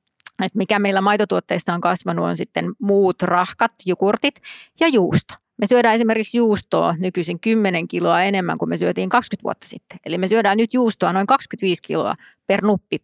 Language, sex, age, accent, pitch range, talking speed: Finnish, female, 20-39, native, 180-225 Hz, 165 wpm